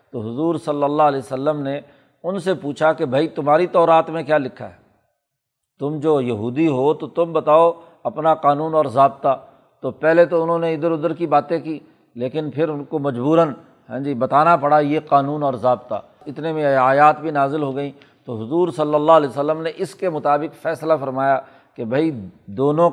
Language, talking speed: Urdu, 195 wpm